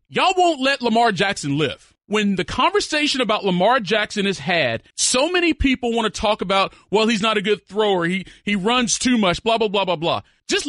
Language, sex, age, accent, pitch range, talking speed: English, male, 40-59, American, 185-265 Hz, 215 wpm